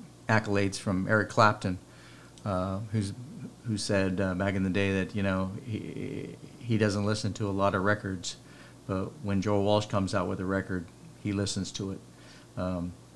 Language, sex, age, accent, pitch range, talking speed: English, male, 50-69, American, 95-105 Hz, 180 wpm